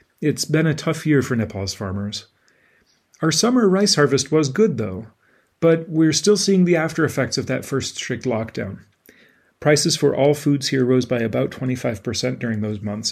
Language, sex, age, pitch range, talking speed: English, male, 40-59, 120-145 Hz, 175 wpm